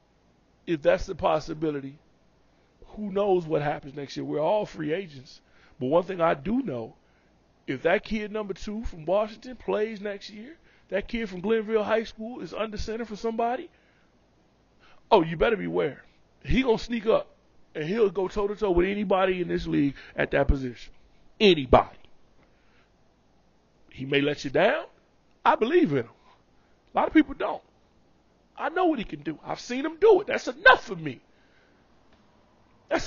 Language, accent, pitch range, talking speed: English, American, 165-245 Hz, 170 wpm